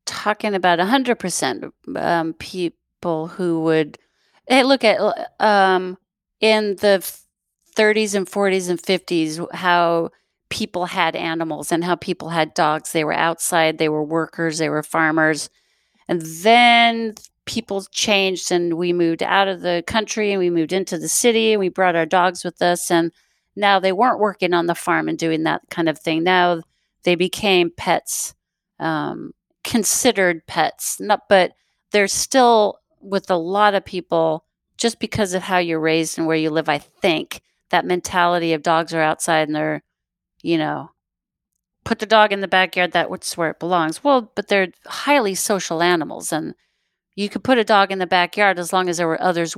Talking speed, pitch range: 175 wpm, 165-200 Hz